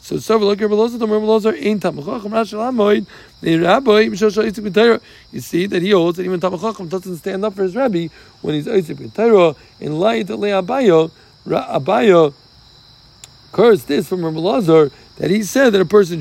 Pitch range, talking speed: 160-205 Hz, 125 wpm